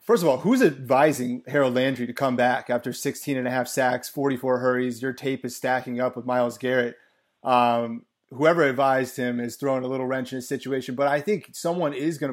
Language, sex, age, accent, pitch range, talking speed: English, male, 30-49, American, 125-150 Hz, 215 wpm